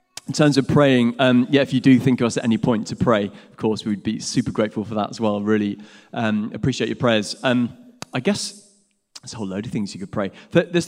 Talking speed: 250 wpm